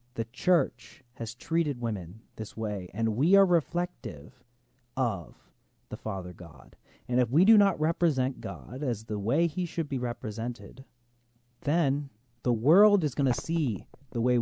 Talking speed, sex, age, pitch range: 160 wpm, male, 30-49, 115-145 Hz